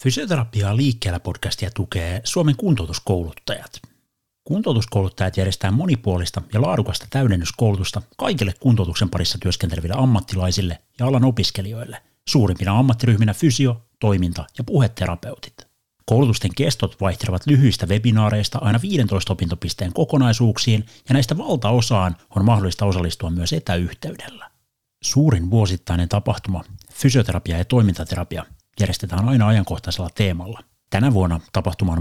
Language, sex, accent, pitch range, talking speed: Finnish, male, native, 90-120 Hz, 105 wpm